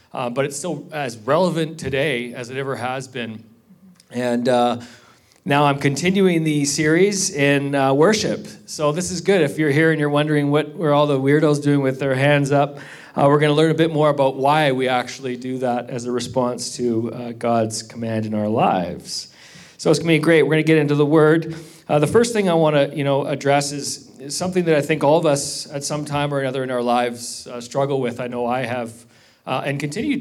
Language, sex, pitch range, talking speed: English, male, 125-150 Hz, 230 wpm